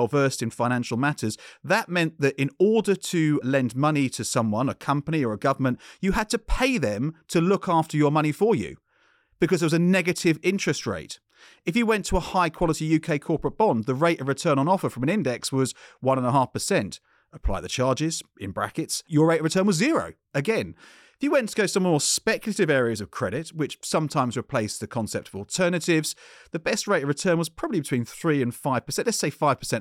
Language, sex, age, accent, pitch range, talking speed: English, male, 30-49, British, 125-180 Hz, 210 wpm